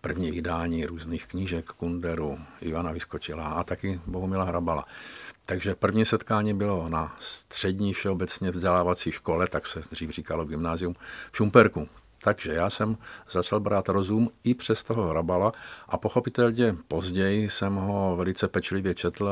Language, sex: Czech, male